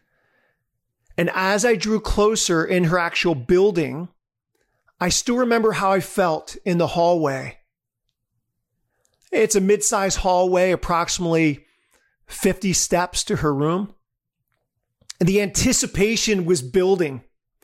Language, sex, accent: English, male, American